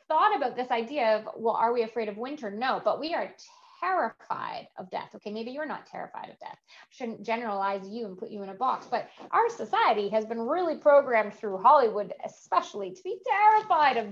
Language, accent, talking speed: English, American, 205 wpm